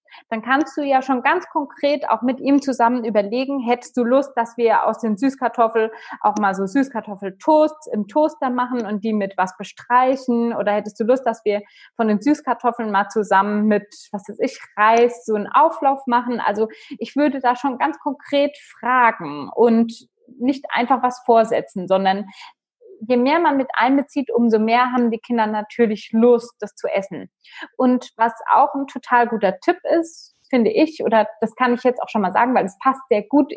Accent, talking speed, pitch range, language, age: German, 190 wpm, 215-265 Hz, German, 20-39